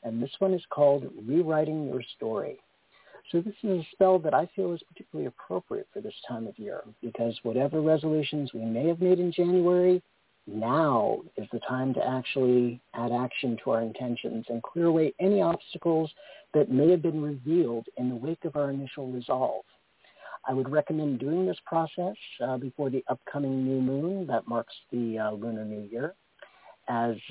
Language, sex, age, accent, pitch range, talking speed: English, male, 50-69, American, 125-170 Hz, 180 wpm